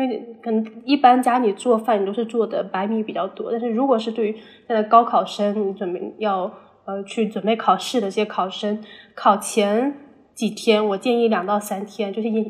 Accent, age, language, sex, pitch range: native, 20-39, Chinese, female, 205-235 Hz